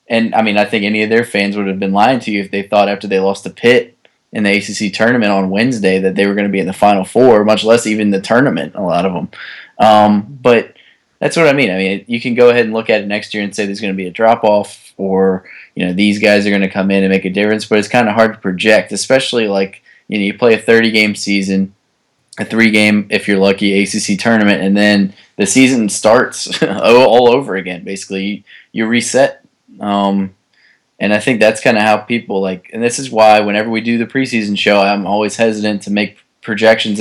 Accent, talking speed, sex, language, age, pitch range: American, 245 wpm, male, English, 20-39, 100-115 Hz